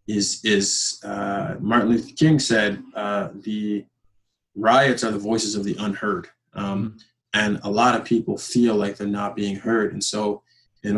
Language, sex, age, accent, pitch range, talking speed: English, male, 20-39, American, 105-120 Hz, 170 wpm